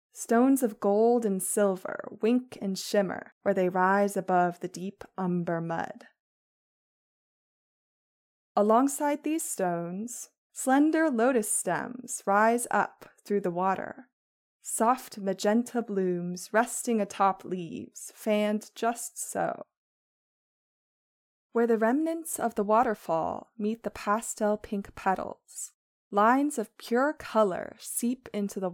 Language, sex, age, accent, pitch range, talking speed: English, female, 20-39, American, 195-250 Hz, 115 wpm